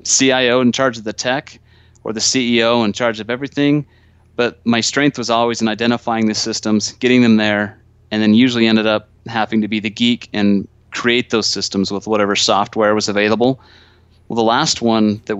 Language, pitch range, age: English, 105-120 Hz, 30-49